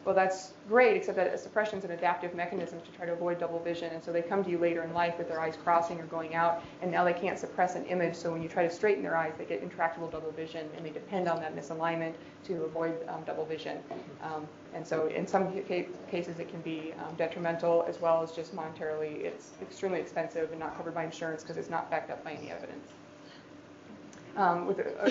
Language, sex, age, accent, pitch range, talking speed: English, female, 20-39, American, 165-195 Hz, 235 wpm